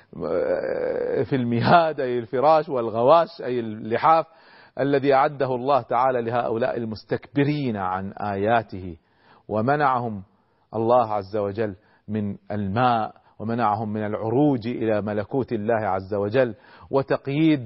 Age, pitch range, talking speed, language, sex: 40-59, 100-140 Hz, 100 wpm, Arabic, male